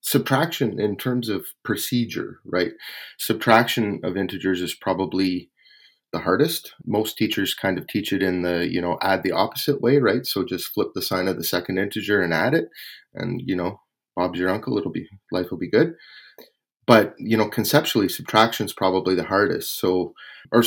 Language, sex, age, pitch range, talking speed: English, male, 30-49, 90-115 Hz, 185 wpm